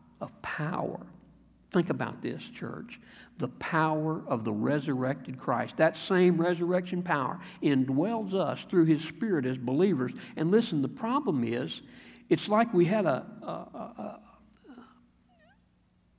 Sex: male